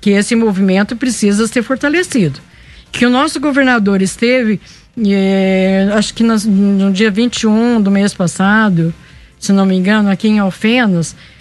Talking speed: 140 wpm